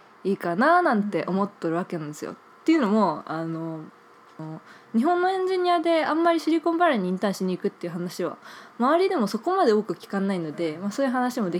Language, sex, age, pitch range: Japanese, female, 20-39, 180-290 Hz